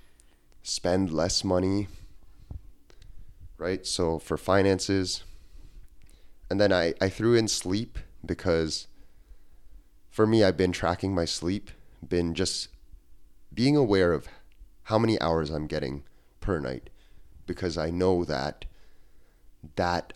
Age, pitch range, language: 30-49, 75-95 Hz, English